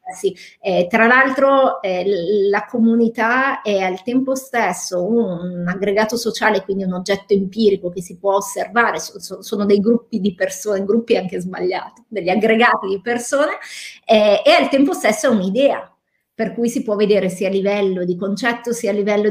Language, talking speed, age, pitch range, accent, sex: Italian, 165 wpm, 30-49, 195-250 Hz, native, female